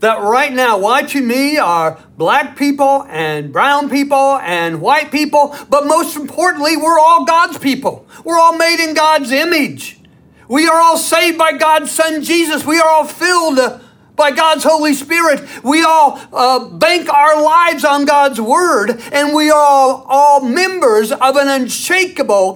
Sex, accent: male, American